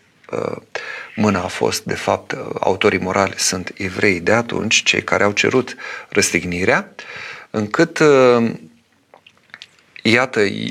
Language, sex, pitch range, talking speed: Romanian, male, 95-110 Hz, 100 wpm